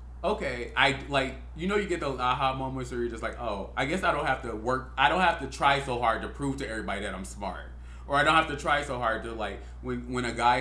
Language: English